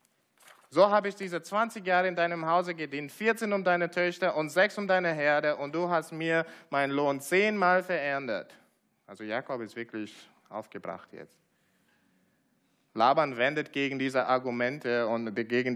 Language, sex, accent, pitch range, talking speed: German, male, German, 120-165 Hz, 150 wpm